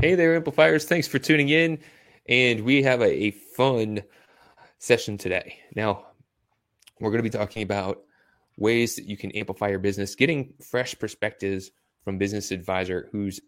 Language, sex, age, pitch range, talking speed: English, male, 20-39, 95-125 Hz, 160 wpm